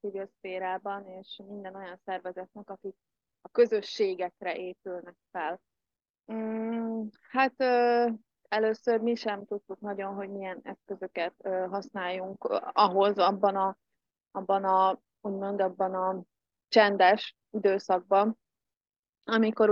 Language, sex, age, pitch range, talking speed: Hungarian, female, 20-39, 185-215 Hz, 90 wpm